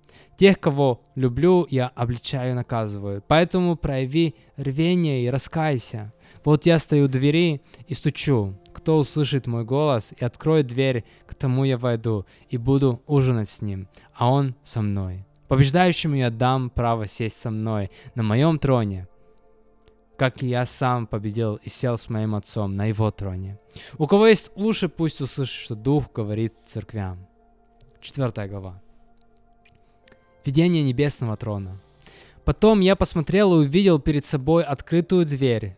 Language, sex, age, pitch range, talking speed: Russian, male, 20-39, 115-155 Hz, 145 wpm